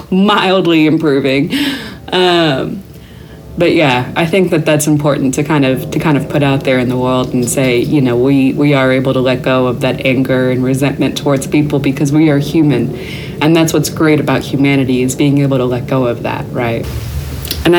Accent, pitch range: American, 140-160 Hz